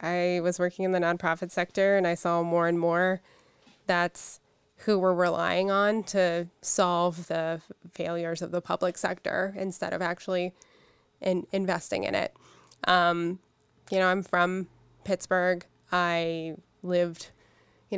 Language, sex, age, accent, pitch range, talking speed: English, female, 20-39, American, 170-185 Hz, 140 wpm